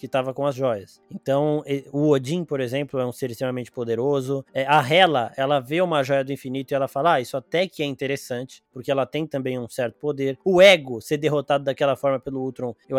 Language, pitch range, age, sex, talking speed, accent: Portuguese, 135-190 Hz, 20-39, male, 220 wpm, Brazilian